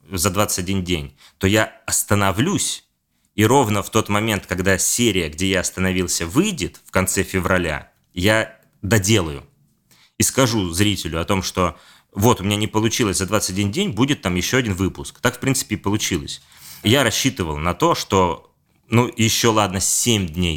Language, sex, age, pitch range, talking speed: Russian, male, 20-39, 90-110 Hz, 165 wpm